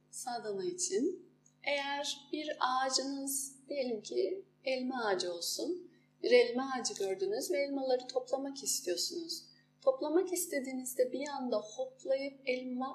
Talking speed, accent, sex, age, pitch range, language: 110 wpm, native, female, 30-49, 235-360 Hz, Turkish